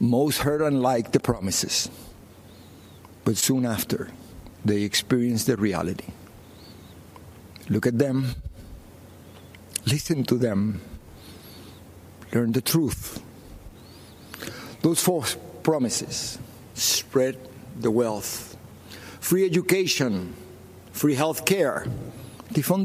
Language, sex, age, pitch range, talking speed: English, male, 60-79, 95-130 Hz, 85 wpm